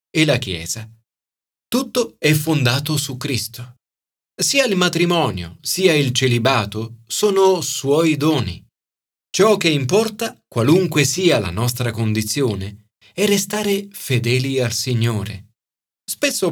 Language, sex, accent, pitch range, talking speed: Italian, male, native, 105-160 Hz, 115 wpm